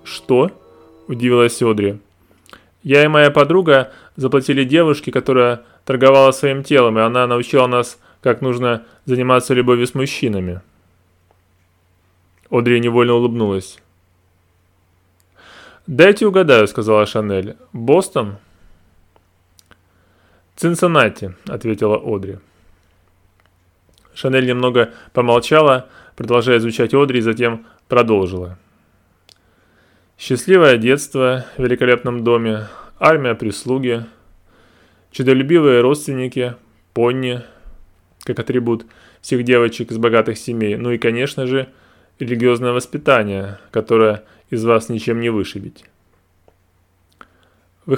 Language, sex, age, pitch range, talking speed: Russian, male, 20-39, 95-130 Hz, 90 wpm